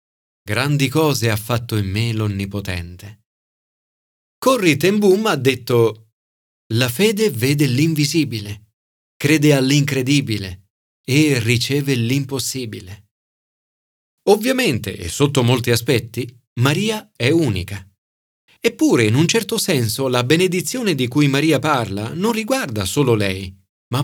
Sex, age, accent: male, 40-59, native